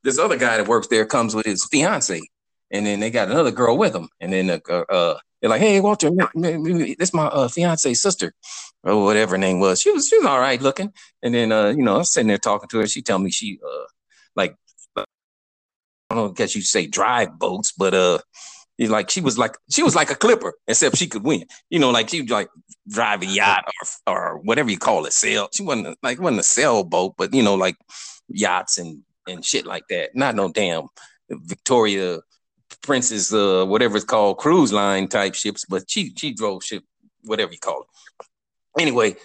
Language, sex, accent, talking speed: English, male, American, 215 wpm